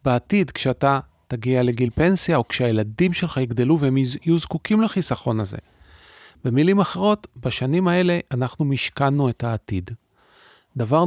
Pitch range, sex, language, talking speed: 115-145 Hz, male, Hebrew, 125 wpm